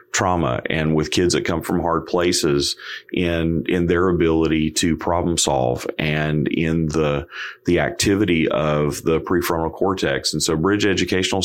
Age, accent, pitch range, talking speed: 40-59, American, 80-90 Hz, 150 wpm